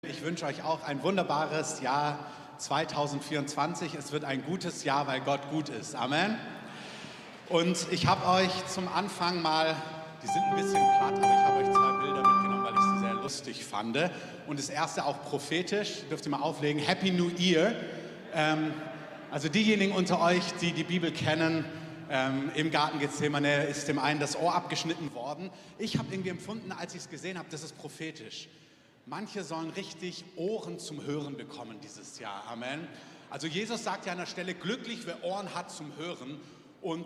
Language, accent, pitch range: German, German, 150-180 Hz